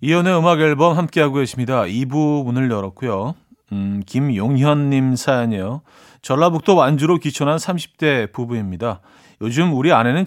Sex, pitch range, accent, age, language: male, 110-155 Hz, native, 40-59, Korean